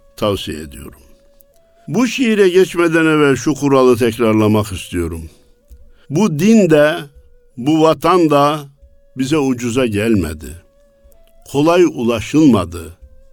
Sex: male